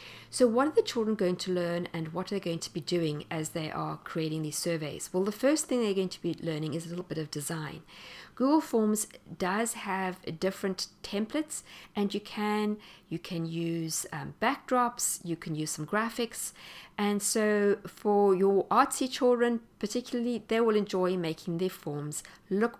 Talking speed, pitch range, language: 180 wpm, 165-225 Hz, English